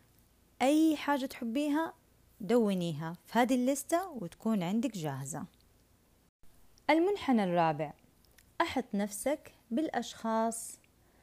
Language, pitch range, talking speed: Arabic, 185-255 Hz, 80 wpm